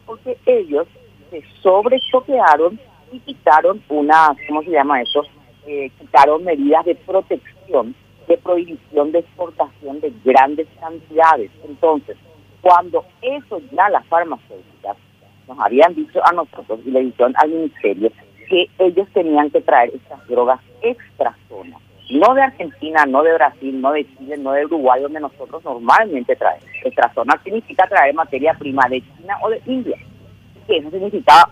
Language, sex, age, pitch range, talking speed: Spanish, female, 40-59, 135-190 Hz, 145 wpm